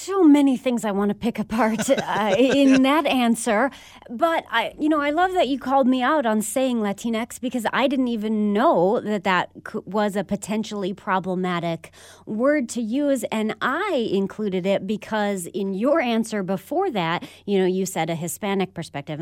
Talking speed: 180 wpm